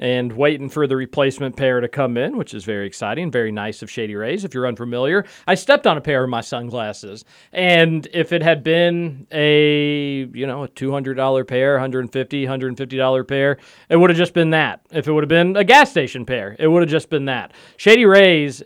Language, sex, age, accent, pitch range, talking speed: English, male, 40-59, American, 130-175 Hz, 210 wpm